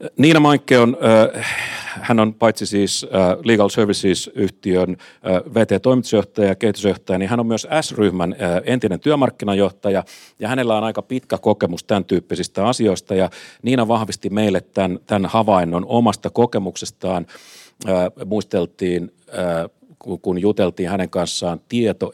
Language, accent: Finnish, native